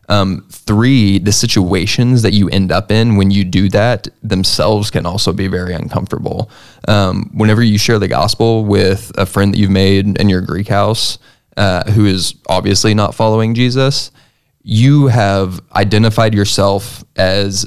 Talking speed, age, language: 160 wpm, 20-39, English